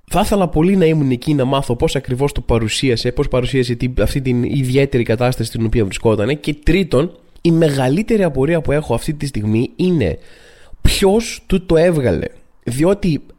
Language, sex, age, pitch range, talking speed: Greek, male, 20-39, 130-185 Hz, 165 wpm